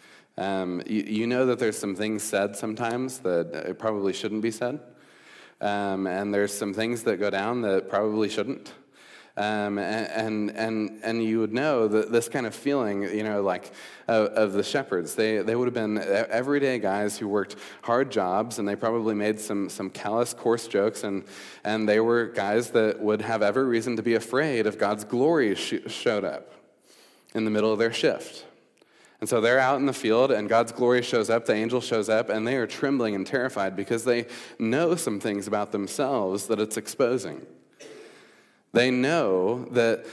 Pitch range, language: 105-125 Hz, English